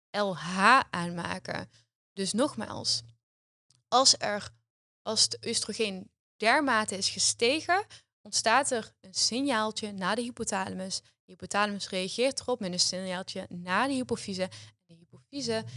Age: 10-29